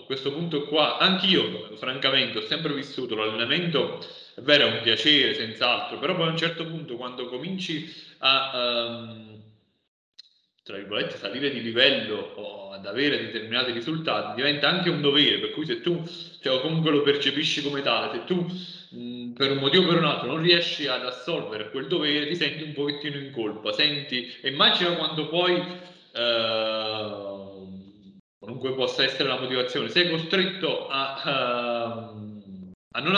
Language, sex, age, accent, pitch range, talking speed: Italian, male, 30-49, native, 120-160 Hz, 165 wpm